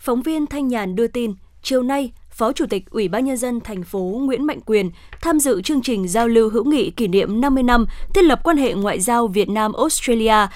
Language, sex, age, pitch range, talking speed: Vietnamese, female, 20-39, 215-275 Hz, 235 wpm